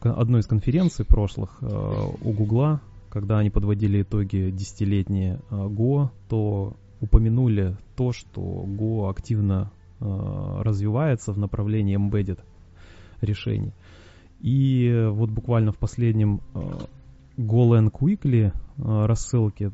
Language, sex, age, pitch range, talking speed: Russian, male, 20-39, 100-120 Hz, 110 wpm